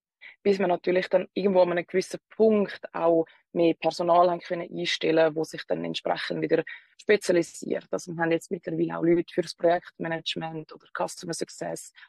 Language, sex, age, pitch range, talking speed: English, female, 20-39, 160-185 Hz, 170 wpm